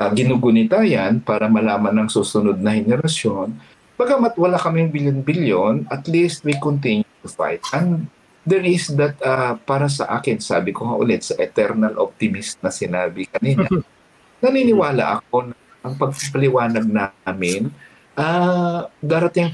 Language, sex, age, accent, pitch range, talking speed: Filipino, male, 50-69, native, 120-185 Hz, 135 wpm